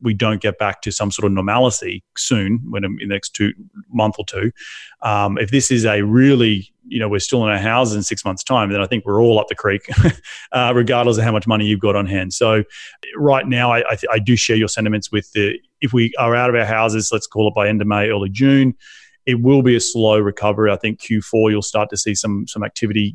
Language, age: English, 30-49